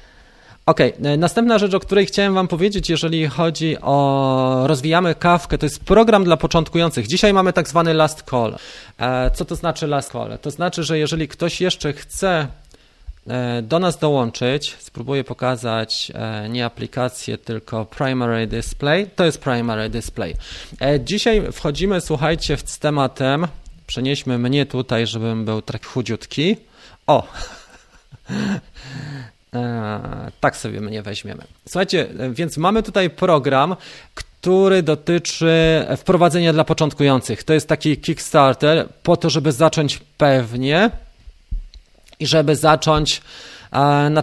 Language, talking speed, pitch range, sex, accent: Polish, 120 wpm, 125-165 Hz, male, native